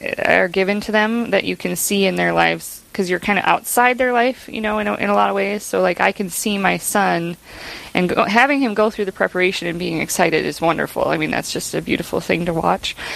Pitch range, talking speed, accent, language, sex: 180-210 Hz, 245 wpm, American, English, female